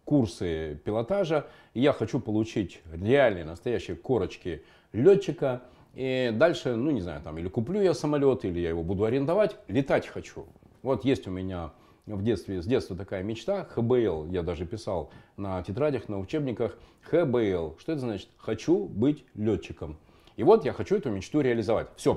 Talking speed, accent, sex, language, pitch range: 160 wpm, native, male, Russian, 100-155 Hz